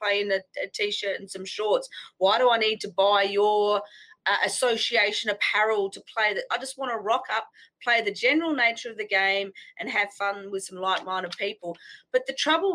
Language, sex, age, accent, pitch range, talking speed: English, female, 30-49, Australian, 210-295 Hz, 205 wpm